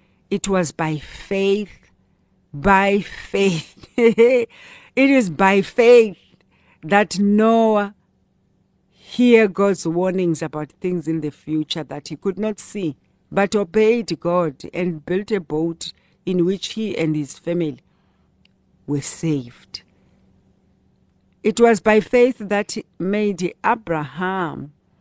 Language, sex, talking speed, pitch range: German, female, 115 wpm, 160-205 Hz